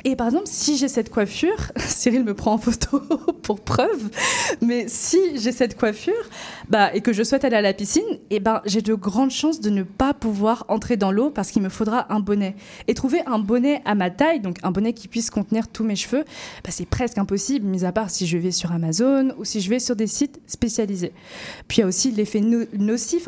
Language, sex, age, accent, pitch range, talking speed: French, female, 20-39, French, 200-260 Hz, 235 wpm